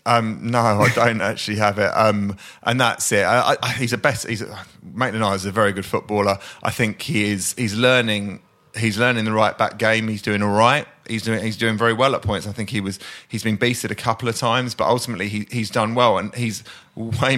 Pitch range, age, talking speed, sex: 110-130 Hz, 30-49, 230 wpm, male